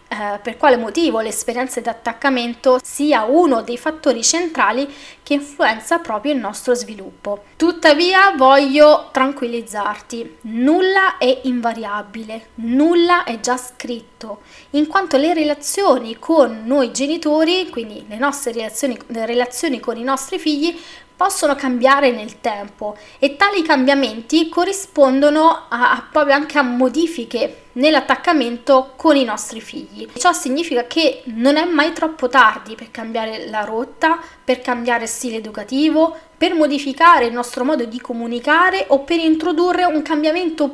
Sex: female